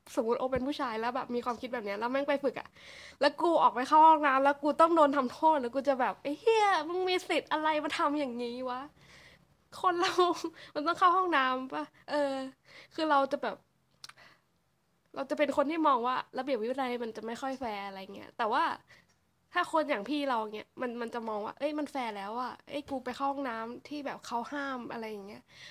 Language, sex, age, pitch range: English, female, 20-39, 235-290 Hz